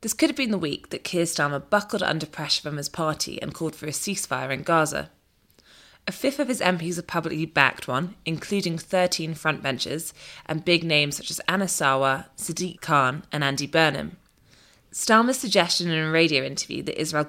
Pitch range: 145-190 Hz